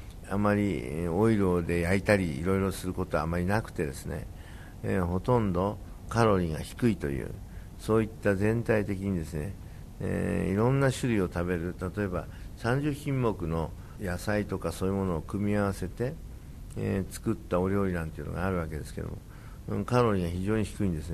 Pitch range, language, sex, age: 85-110 Hz, Japanese, male, 60-79